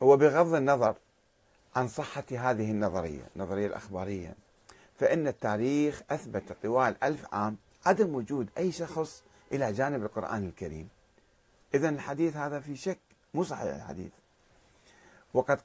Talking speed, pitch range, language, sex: 125 wpm, 105-155 Hz, Arabic, male